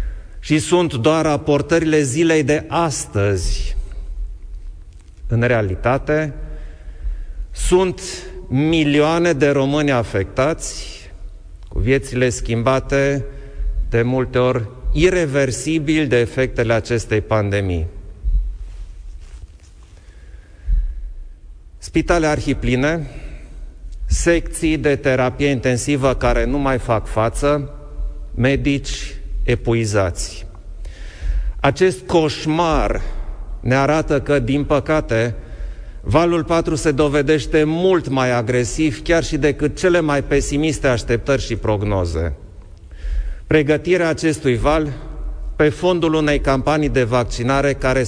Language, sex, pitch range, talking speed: Romanian, male, 95-155 Hz, 85 wpm